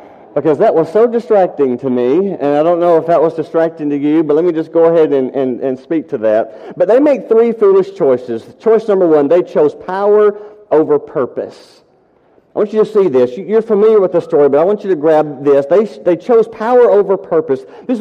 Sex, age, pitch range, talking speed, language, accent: male, 50-69, 150-210 Hz, 225 wpm, English, American